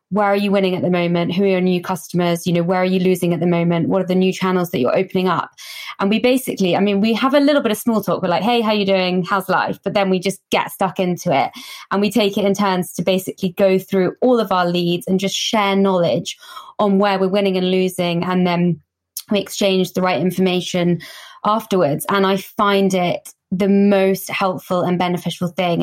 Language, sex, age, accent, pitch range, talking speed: English, female, 20-39, British, 180-200 Hz, 235 wpm